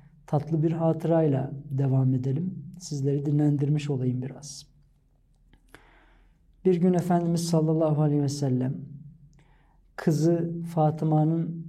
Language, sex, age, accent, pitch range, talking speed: Turkish, male, 50-69, native, 145-165 Hz, 90 wpm